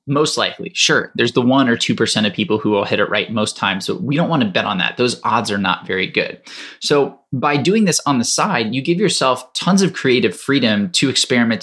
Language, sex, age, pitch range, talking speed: English, male, 20-39, 110-155 Hz, 245 wpm